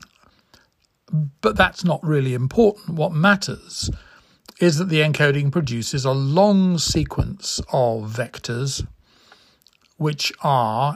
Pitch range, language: 125-160 Hz, English